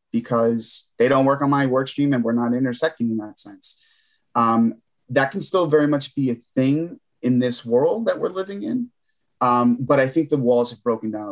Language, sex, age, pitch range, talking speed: English, male, 30-49, 110-130 Hz, 210 wpm